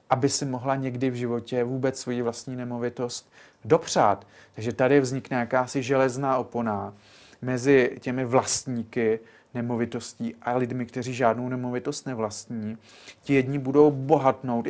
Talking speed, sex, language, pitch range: 125 wpm, male, Czech, 120-135 Hz